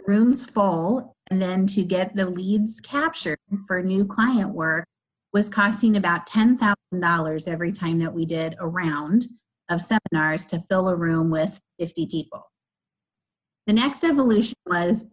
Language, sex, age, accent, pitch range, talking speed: English, female, 30-49, American, 175-220 Hz, 145 wpm